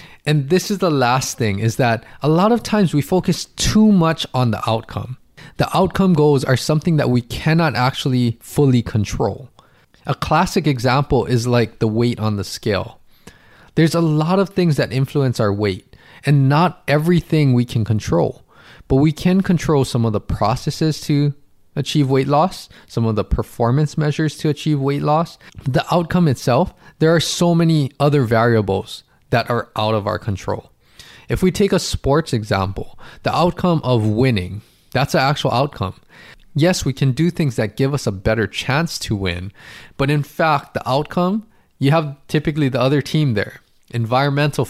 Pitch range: 115-160 Hz